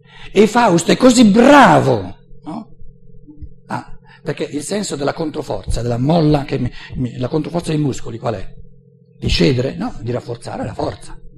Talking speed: 160 wpm